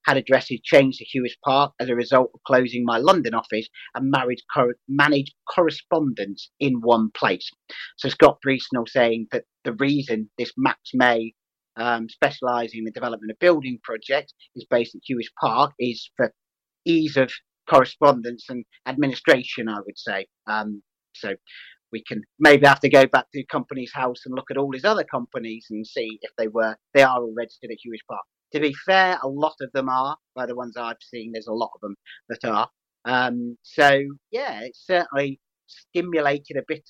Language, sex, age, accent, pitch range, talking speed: English, male, 40-59, British, 120-140 Hz, 185 wpm